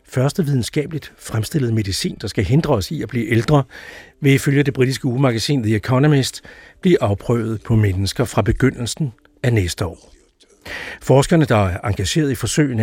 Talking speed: 160 wpm